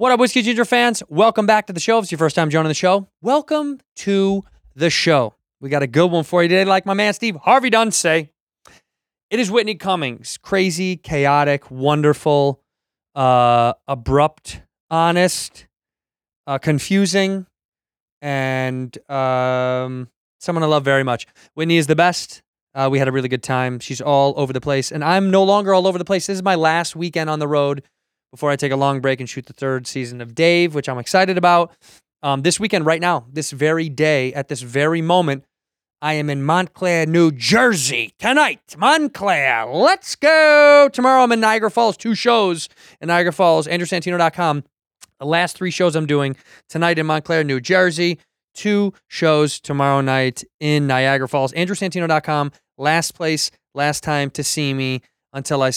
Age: 20-39